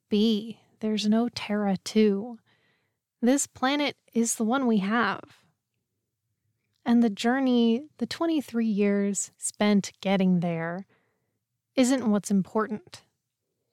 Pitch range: 195-245 Hz